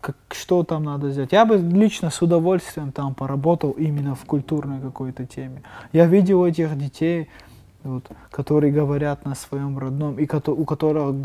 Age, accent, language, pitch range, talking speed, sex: 20-39, native, Russian, 145-195 Hz, 150 wpm, male